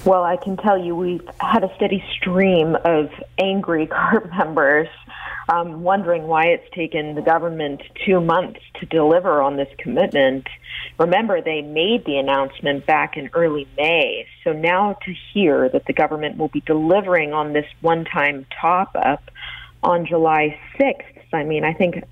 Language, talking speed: English, 155 wpm